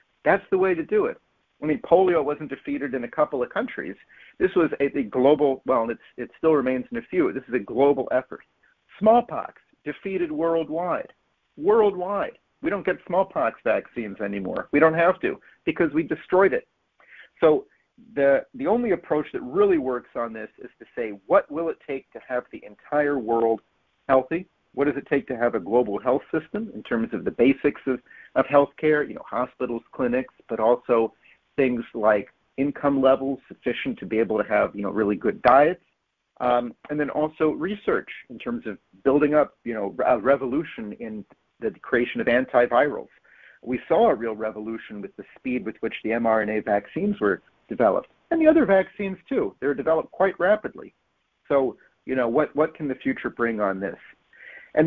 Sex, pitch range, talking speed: male, 125-185 Hz, 185 wpm